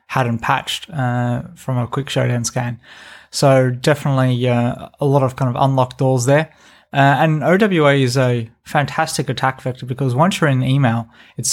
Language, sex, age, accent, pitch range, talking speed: English, male, 20-39, Australian, 125-140 Hz, 170 wpm